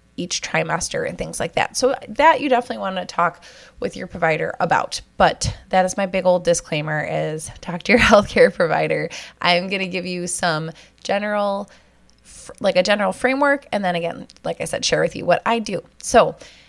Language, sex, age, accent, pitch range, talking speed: English, female, 20-39, American, 170-210 Hz, 195 wpm